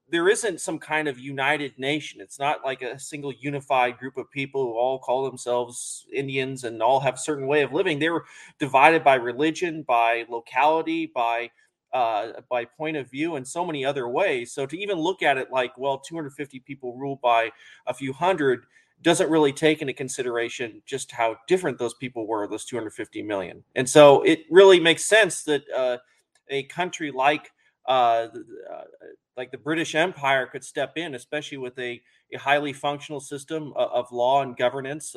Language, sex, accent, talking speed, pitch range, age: English, male, American, 185 wpm, 130-155 Hz, 30-49